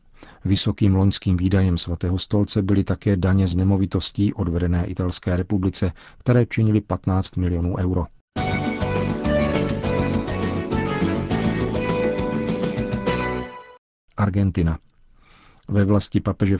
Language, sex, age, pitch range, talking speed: Czech, male, 40-59, 90-100 Hz, 80 wpm